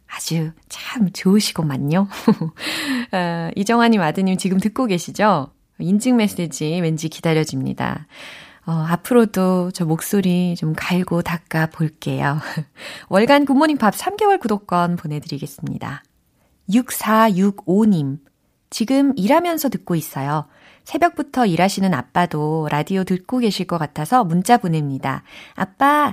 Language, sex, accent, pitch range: Korean, female, native, 160-250 Hz